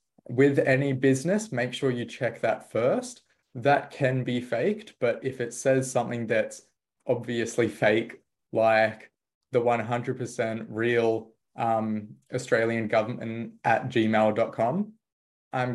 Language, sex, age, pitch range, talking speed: English, male, 20-39, 105-120 Hz, 120 wpm